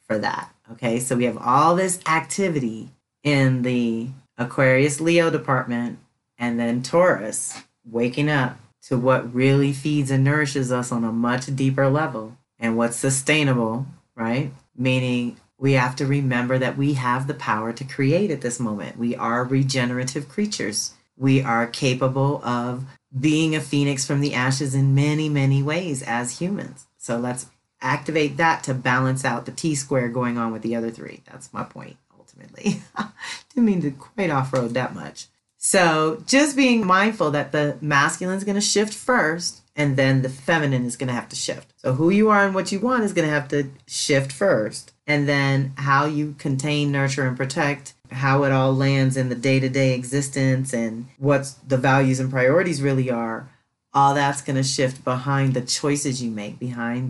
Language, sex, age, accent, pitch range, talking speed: English, female, 30-49, American, 125-145 Hz, 175 wpm